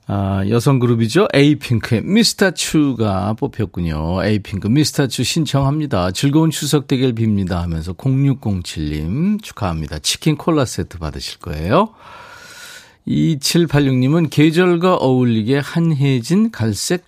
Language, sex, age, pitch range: Korean, male, 40-59, 100-150 Hz